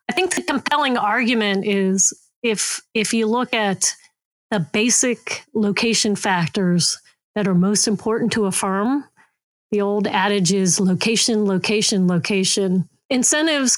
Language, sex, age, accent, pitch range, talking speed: English, female, 40-59, American, 200-240 Hz, 130 wpm